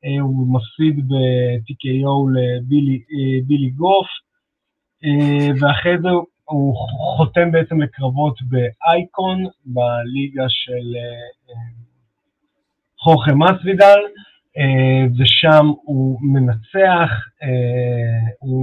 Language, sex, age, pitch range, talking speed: Hebrew, male, 30-49, 120-150 Hz, 65 wpm